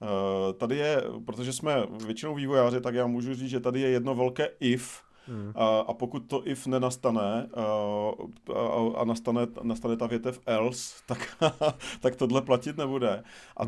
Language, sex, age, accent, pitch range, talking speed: Czech, male, 40-59, native, 105-125 Hz, 155 wpm